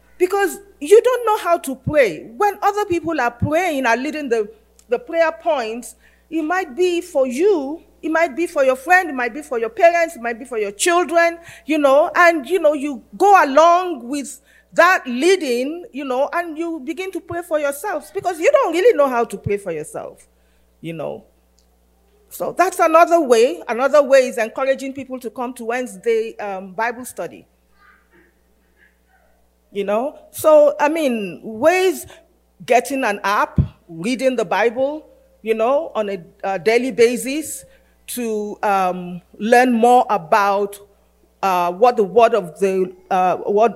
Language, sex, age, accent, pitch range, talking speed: English, female, 40-59, Nigerian, 215-330 Hz, 165 wpm